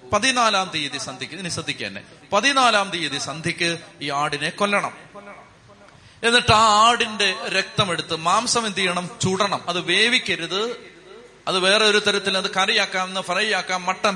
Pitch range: 160-200 Hz